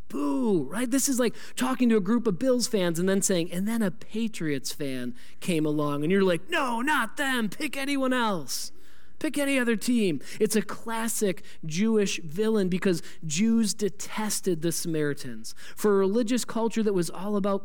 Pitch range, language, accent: 160-220 Hz, English, American